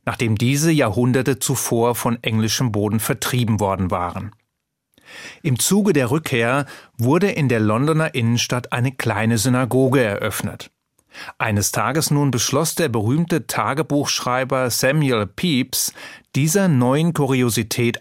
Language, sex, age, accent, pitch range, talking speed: German, male, 30-49, German, 115-150 Hz, 115 wpm